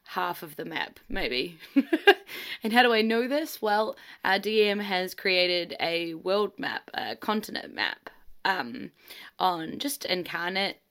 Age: 10-29